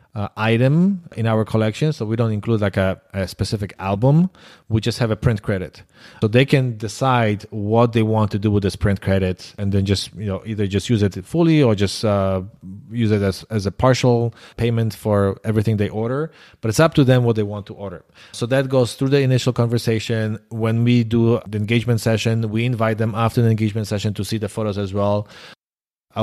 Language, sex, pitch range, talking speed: English, male, 105-120 Hz, 215 wpm